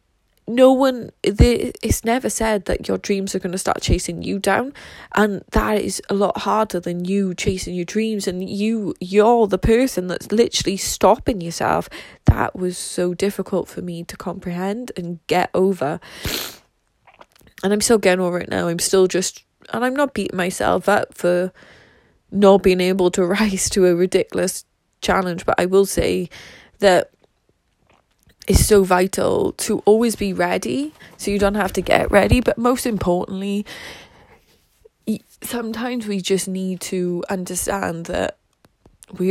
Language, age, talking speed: English, 10-29, 155 wpm